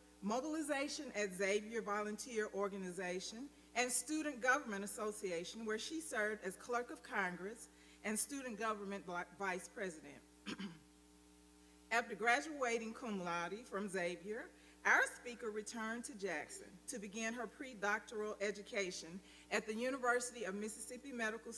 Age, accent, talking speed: 40-59, American, 120 wpm